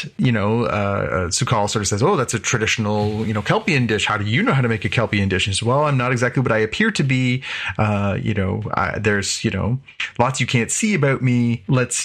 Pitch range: 105-125 Hz